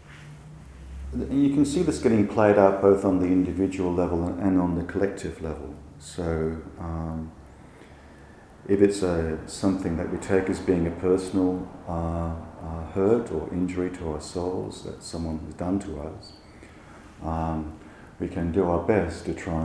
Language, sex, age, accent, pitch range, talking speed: English, male, 40-59, Australian, 75-90 Hz, 160 wpm